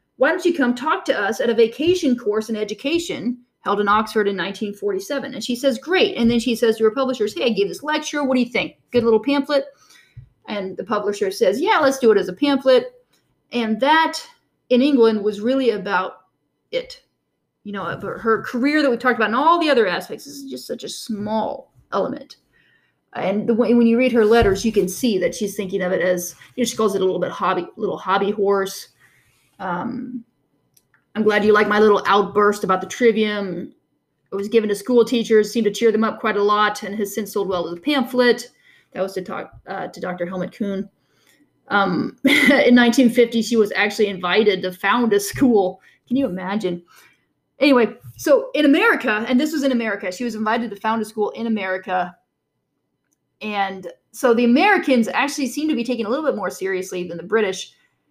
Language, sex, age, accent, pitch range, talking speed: English, female, 30-49, American, 200-260 Hz, 205 wpm